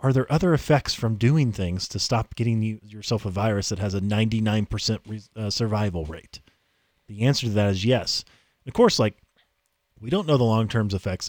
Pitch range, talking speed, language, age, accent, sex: 105-170 Hz, 205 wpm, English, 30-49, American, male